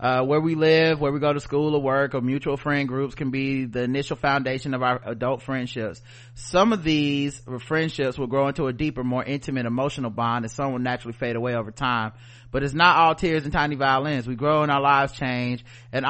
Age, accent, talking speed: 30-49, American, 225 wpm